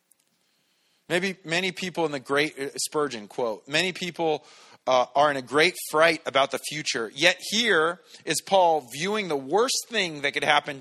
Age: 30-49